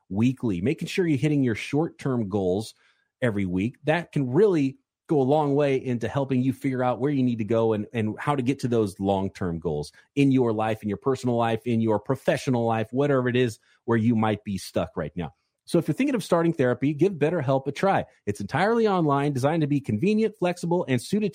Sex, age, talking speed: male, 30-49, 225 wpm